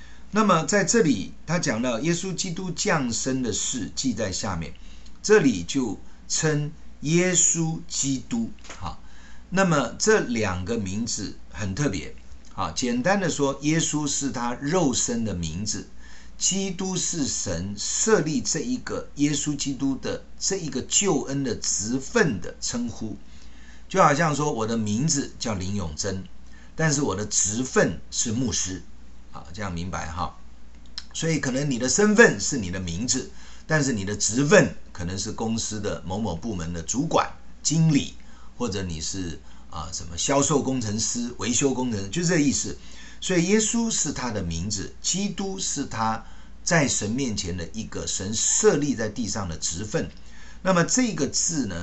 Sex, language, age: male, Chinese, 50-69